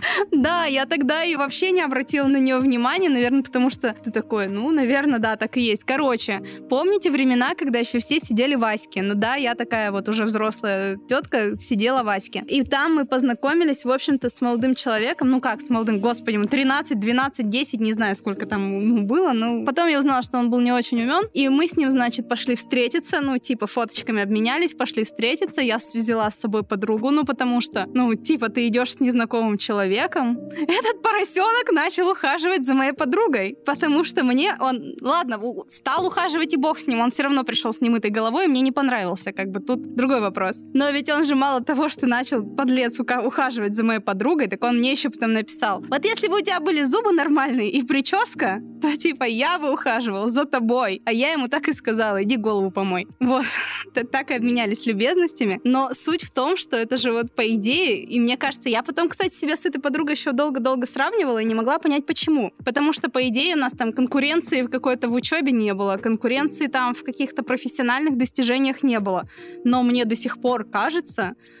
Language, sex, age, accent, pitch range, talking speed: Russian, female, 20-39, native, 230-290 Hz, 205 wpm